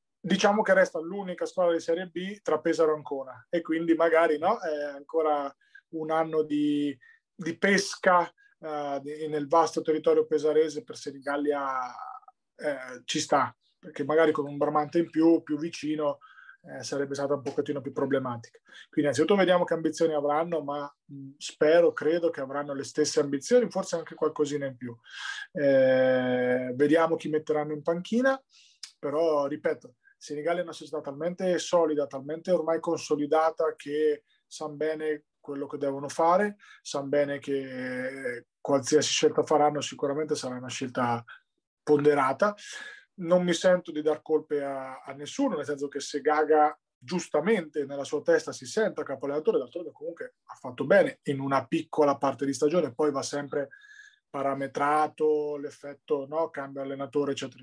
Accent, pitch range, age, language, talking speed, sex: native, 140-170 Hz, 30-49, Italian, 150 wpm, male